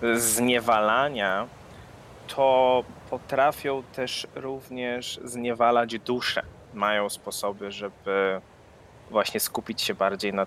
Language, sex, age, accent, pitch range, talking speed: Polish, male, 20-39, native, 115-145 Hz, 85 wpm